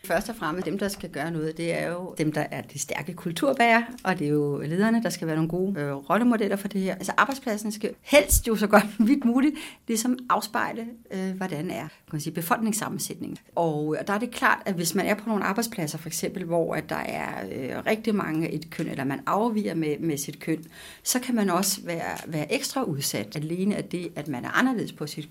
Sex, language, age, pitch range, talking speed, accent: female, Danish, 60-79, 160-215 Hz, 230 wpm, native